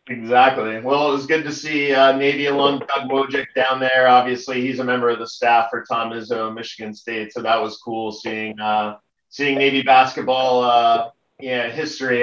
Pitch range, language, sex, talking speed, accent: 120-150 Hz, English, male, 185 wpm, American